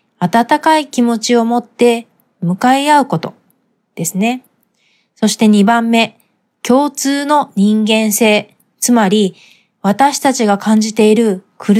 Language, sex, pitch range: Japanese, female, 205-255 Hz